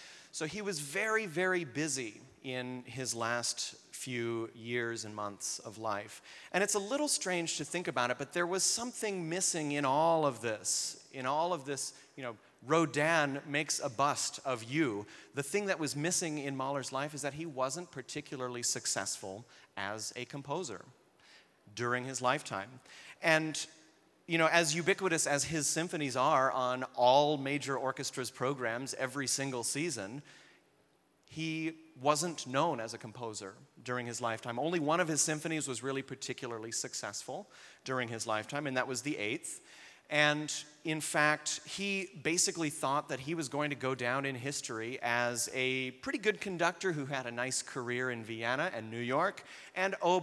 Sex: male